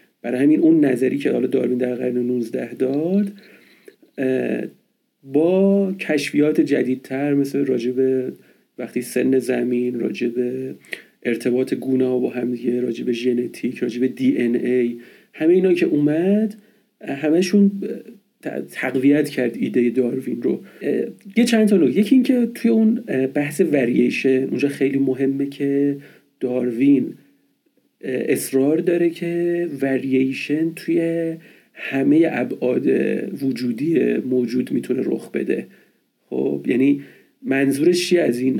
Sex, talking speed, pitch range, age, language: male, 115 wpm, 125-170 Hz, 40-59, Persian